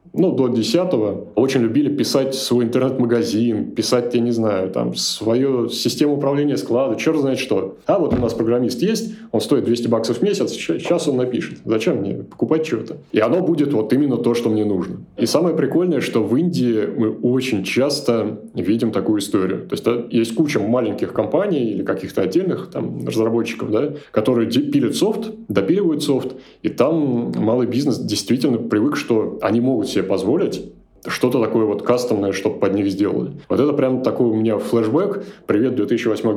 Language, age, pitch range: Russian, 20-39, 110-140 Hz